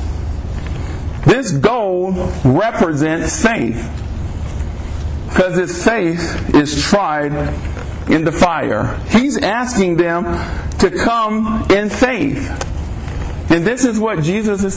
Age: 50-69